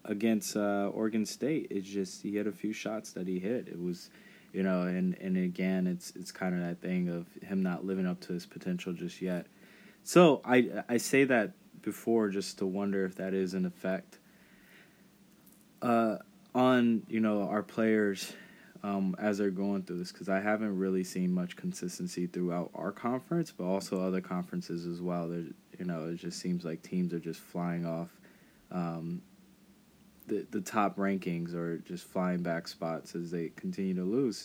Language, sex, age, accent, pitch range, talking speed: English, male, 20-39, American, 90-115 Hz, 185 wpm